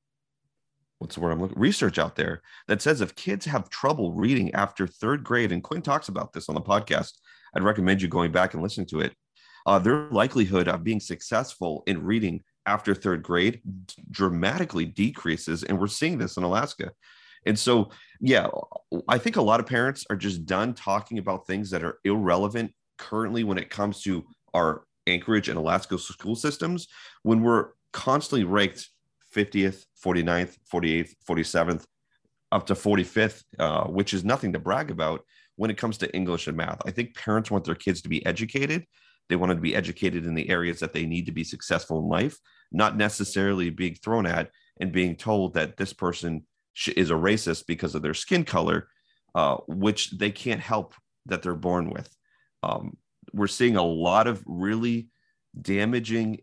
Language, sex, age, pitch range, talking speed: English, male, 30-49, 90-115 Hz, 180 wpm